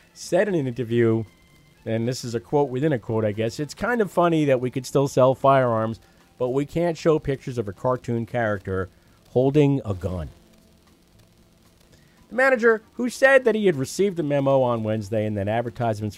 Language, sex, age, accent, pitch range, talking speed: English, male, 40-59, American, 105-135 Hz, 190 wpm